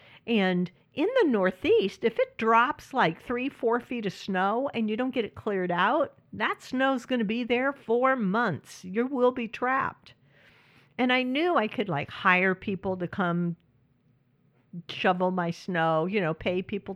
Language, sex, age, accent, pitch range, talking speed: English, female, 50-69, American, 160-215 Hz, 170 wpm